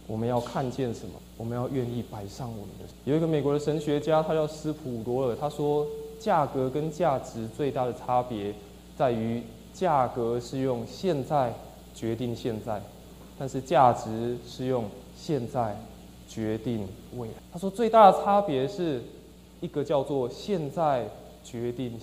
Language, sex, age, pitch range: Chinese, male, 20-39, 115-150 Hz